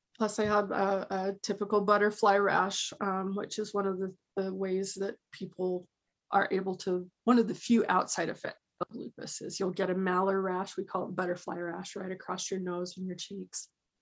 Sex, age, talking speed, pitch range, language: female, 20-39, 205 wpm, 190-240 Hz, English